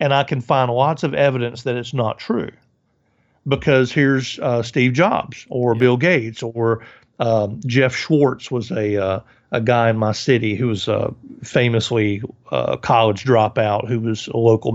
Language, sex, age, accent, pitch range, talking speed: English, male, 50-69, American, 120-150 Hz, 175 wpm